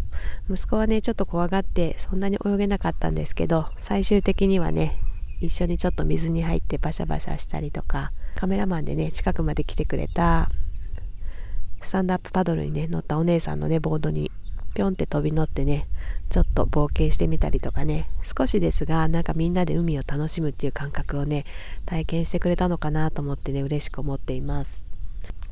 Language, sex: Japanese, female